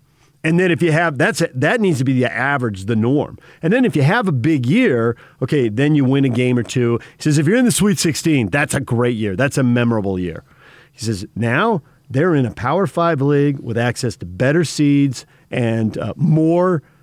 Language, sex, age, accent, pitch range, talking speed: English, male, 50-69, American, 125-160 Hz, 220 wpm